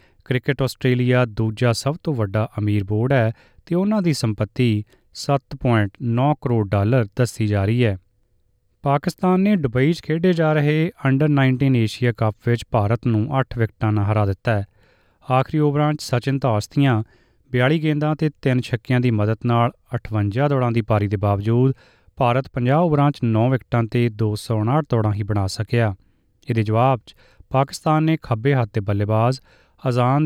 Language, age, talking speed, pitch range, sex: Punjabi, 30-49, 150 wpm, 110-135 Hz, male